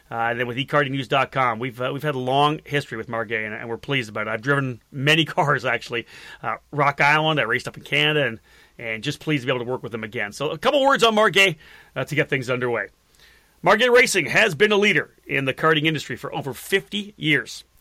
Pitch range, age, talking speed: 140-190 Hz, 40-59, 235 wpm